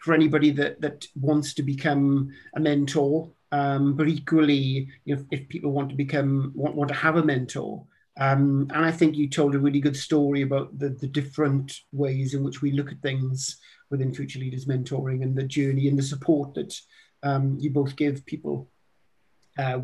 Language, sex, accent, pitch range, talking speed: English, male, British, 135-150 Hz, 195 wpm